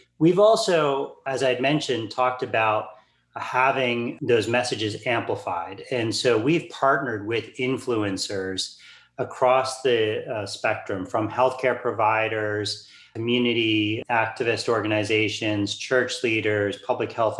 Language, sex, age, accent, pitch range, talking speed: English, male, 40-59, American, 105-125 Hz, 105 wpm